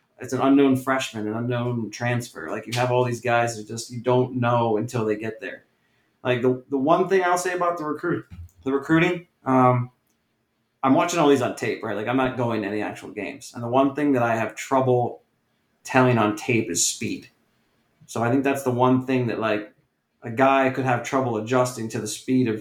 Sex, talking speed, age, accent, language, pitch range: male, 215 wpm, 30-49, American, English, 110-130 Hz